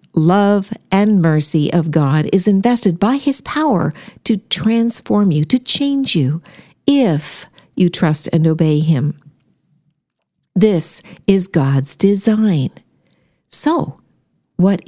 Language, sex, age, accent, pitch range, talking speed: English, female, 50-69, American, 160-230 Hz, 115 wpm